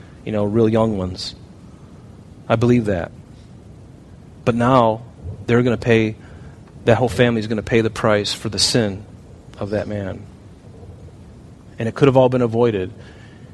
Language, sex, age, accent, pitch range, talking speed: English, male, 40-59, American, 105-125 Hz, 160 wpm